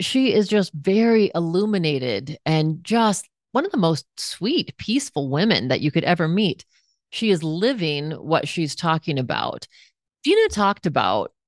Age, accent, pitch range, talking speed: 30-49, American, 140-190 Hz, 150 wpm